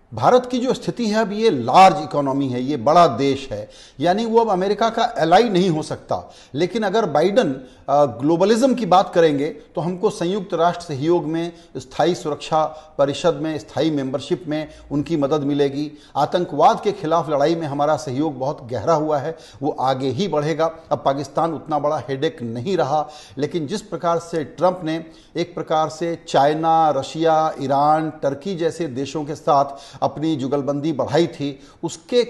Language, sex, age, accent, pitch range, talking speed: Hindi, male, 50-69, native, 145-180 Hz, 165 wpm